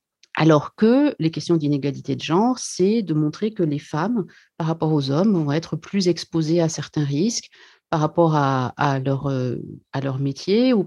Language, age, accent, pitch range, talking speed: French, 40-59, French, 145-170 Hz, 175 wpm